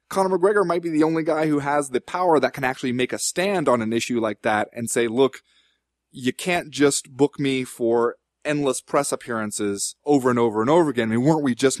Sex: male